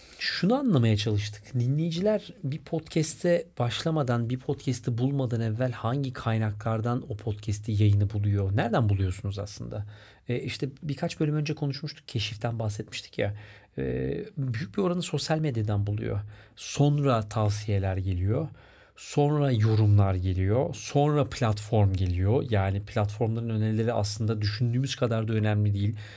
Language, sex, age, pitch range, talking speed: Turkish, male, 40-59, 105-130 Hz, 125 wpm